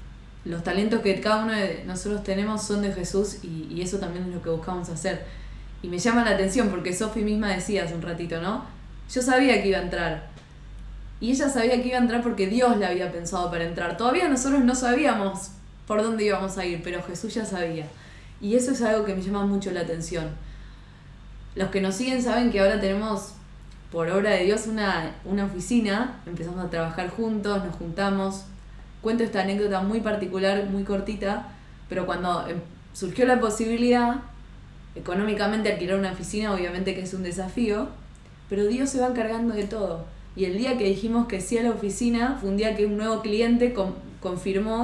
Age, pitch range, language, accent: 20-39, 180-220 Hz, Spanish, Argentinian